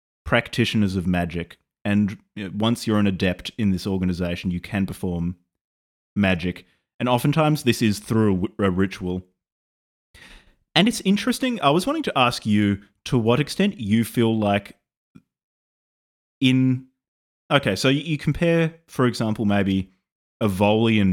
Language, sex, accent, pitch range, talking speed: English, male, Australian, 95-125 Hz, 135 wpm